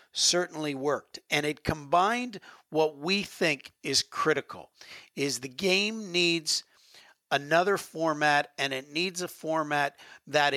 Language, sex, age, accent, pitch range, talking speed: English, male, 50-69, American, 145-180 Hz, 125 wpm